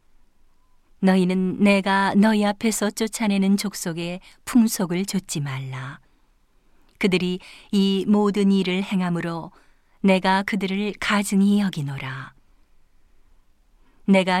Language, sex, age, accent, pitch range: Korean, female, 40-59, native, 175-205 Hz